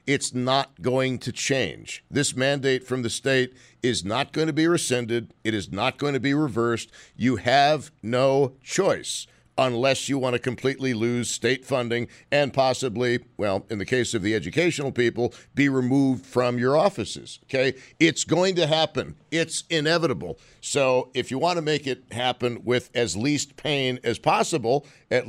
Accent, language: American, English